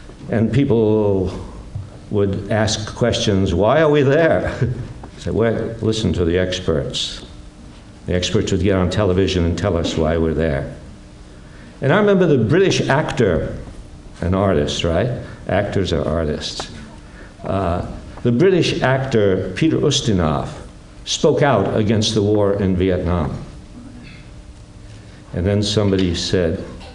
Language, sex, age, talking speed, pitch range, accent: English, male, 60-79, 125 wpm, 90-130 Hz, American